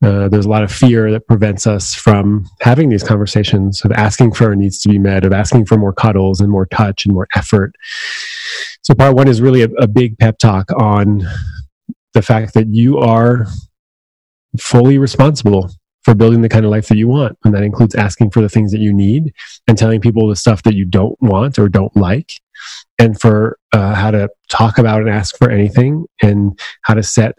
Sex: male